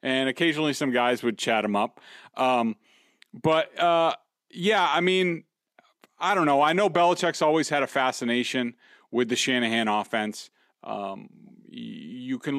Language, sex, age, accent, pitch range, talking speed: English, male, 30-49, American, 115-155 Hz, 150 wpm